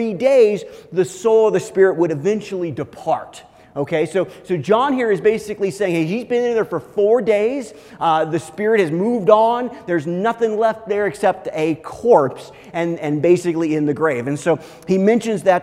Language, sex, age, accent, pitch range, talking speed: English, male, 30-49, American, 165-215 Hz, 190 wpm